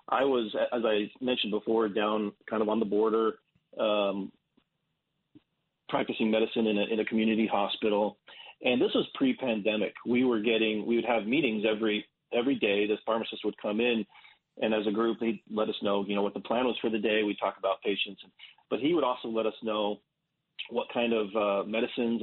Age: 40-59